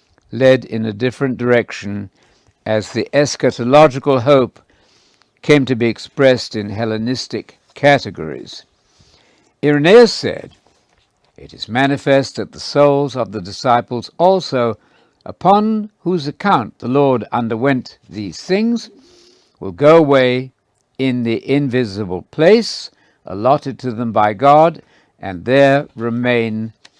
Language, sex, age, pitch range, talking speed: English, male, 60-79, 110-145 Hz, 115 wpm